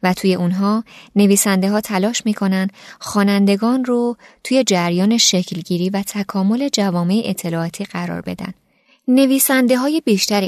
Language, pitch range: Persian, 180-230 Hz